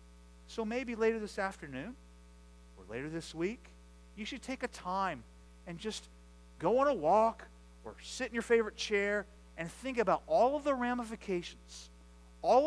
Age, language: 40-59, English